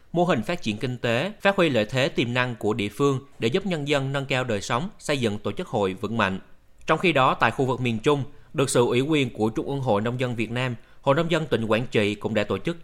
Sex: male